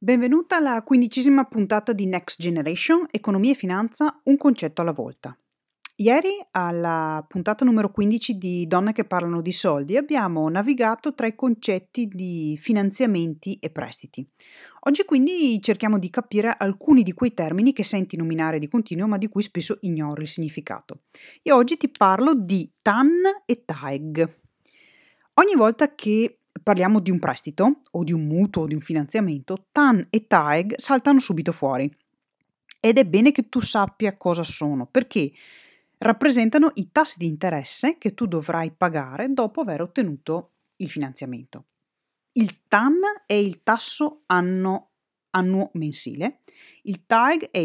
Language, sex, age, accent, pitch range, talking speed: Italian, female, 30-49, native, 165-245 Hz, 145 wpm